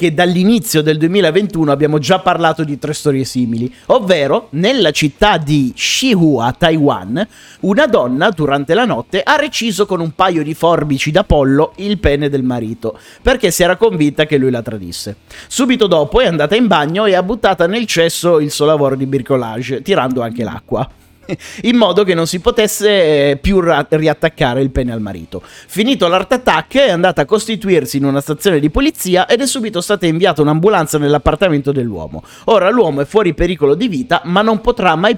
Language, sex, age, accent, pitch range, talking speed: Italian, male, 30-49, native, 140-205 Hz, 180 wpm